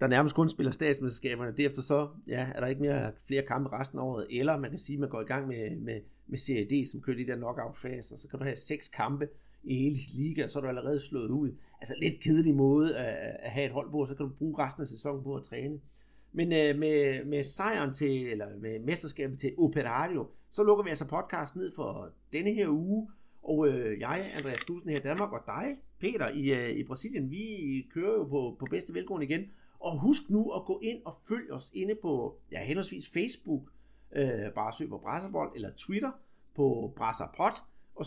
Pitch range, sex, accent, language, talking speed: 135-185 Hz, male, native, Danish, 220 wpm